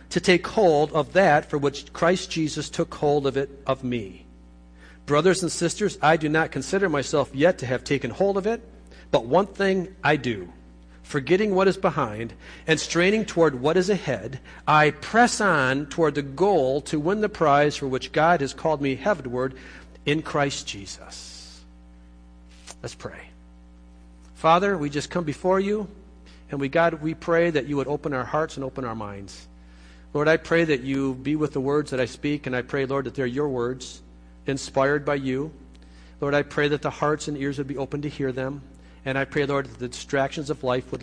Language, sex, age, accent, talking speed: English, male, 50-69, American, 195 wpm